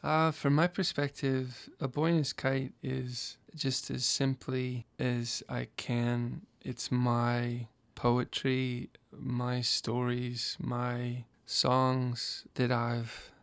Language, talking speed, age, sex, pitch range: English, 105 wpm, 20-39, male, 120-135 Hz